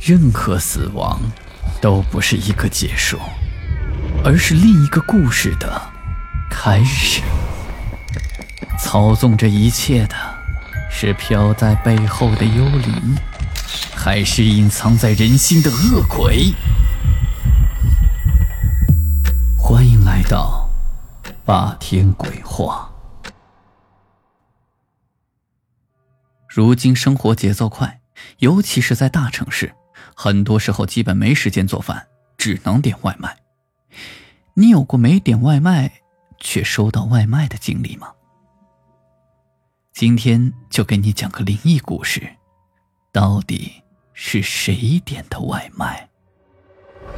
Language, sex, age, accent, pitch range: Chinese, male, 20-39, native, 95-130 Hz